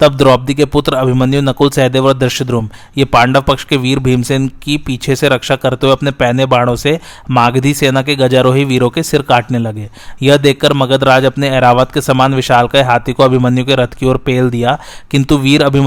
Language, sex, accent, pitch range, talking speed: Hindi, male, native, 125-140 Hz, 110 wpm